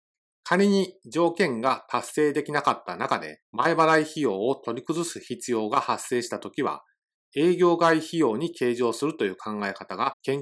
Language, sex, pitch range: Japanese, male, 120-170 Hz